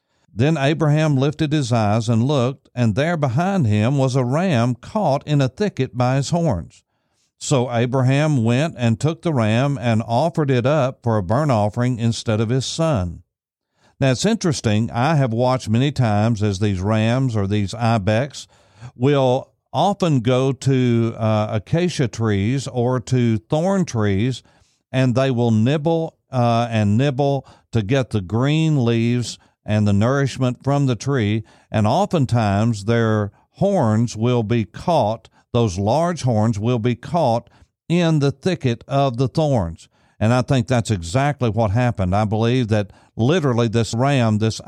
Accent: American